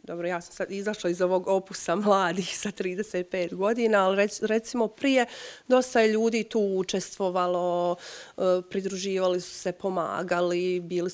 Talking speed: 135 wpm